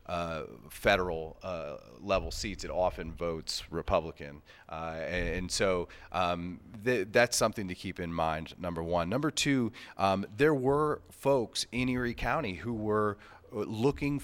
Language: English